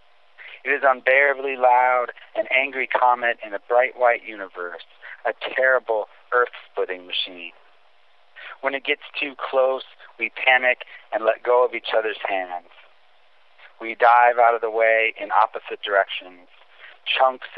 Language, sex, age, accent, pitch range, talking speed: English, male, 40-59, American, 105-125 Hz, 135 wpm